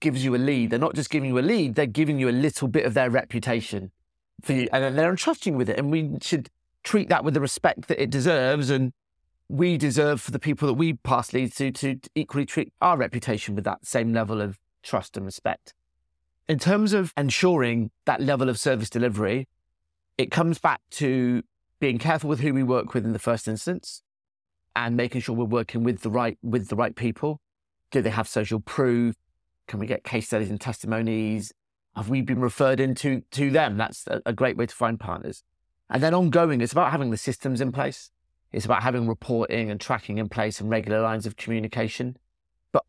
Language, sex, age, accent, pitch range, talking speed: English, male, 30-49, British, 110-140 Hz, 210 wpm